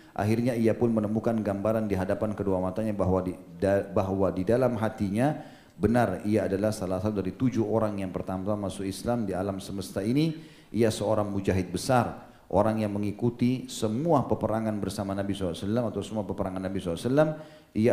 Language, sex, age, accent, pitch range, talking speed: Indonesian, male, 40-59, native, 100-125 Hz, 160 wpm